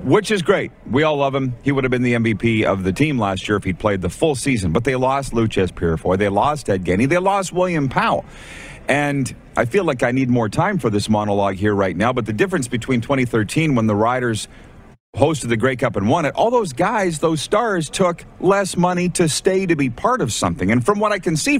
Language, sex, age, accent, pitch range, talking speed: English, male, 40-59, American, 115-150 Hz, 245 wpm